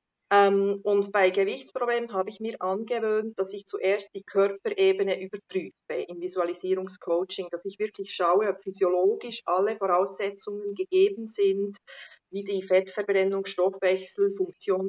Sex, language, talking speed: female, German, 120 wpm